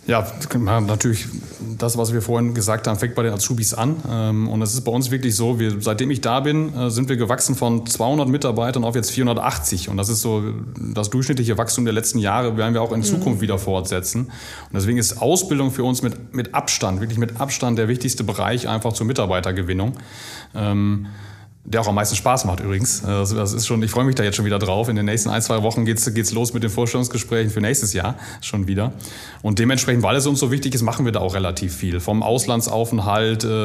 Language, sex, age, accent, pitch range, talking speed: German, male, 30-49, German, 110-125 Hz, 210 wpm